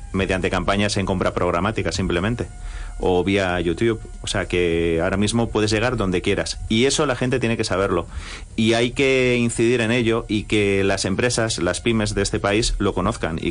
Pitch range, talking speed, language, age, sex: 95-115 Hz, 190 wpm, Spanish, 30-49, male